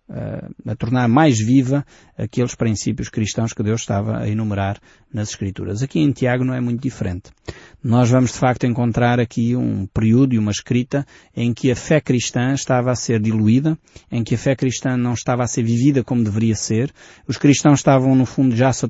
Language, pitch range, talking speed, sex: Portuguese, 110-135 Hz, 195 wpm, male